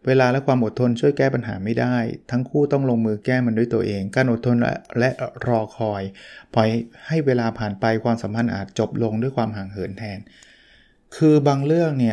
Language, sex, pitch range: Thai, male, 110-125 Hz